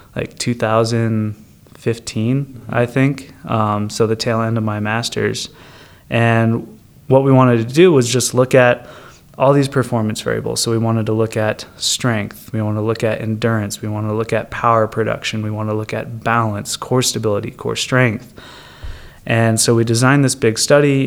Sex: male